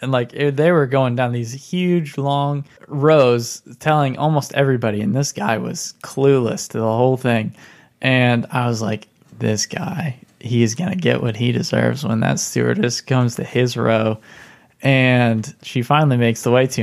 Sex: male